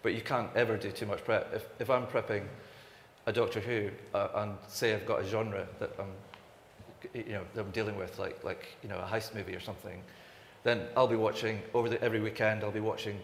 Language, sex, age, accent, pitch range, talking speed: English, male, 40-59, British, 105-115 Hz, 225 wpm